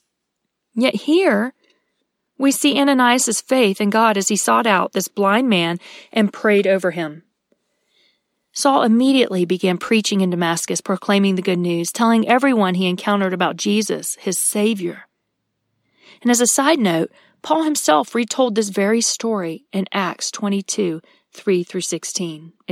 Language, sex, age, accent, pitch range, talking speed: English, female, 40-59, American, 190-250 Hz, 135 wpm